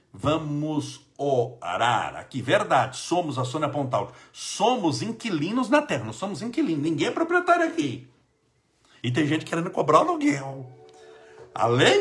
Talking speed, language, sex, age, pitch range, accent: 130 wpm, Portuguese, male, 60-79, 120-170 Hz, Brazilian